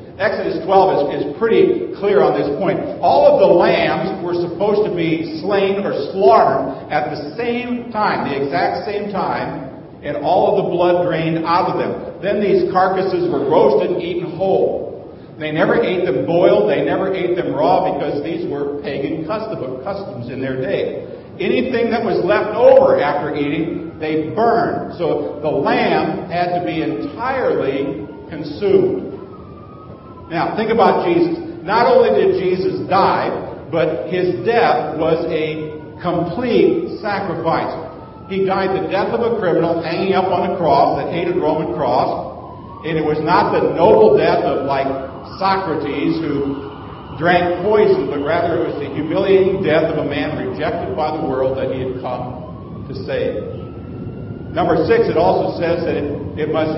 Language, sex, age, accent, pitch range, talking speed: English, male, 50-69, American, 155-210 Hz, 165 wpm